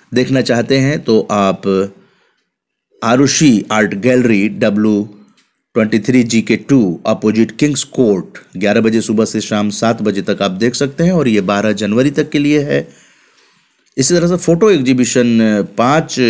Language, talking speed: Hindi, 155 wpm